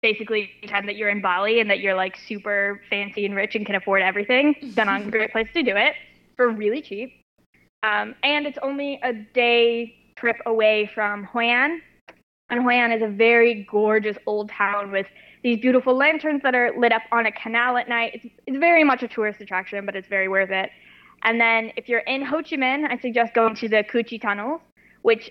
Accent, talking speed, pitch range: American, 215 wpm, 205-250 Hz